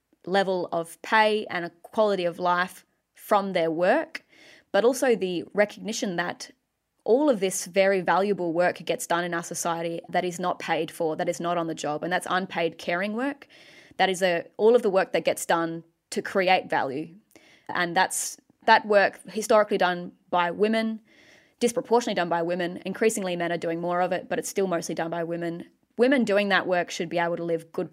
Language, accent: English, Australian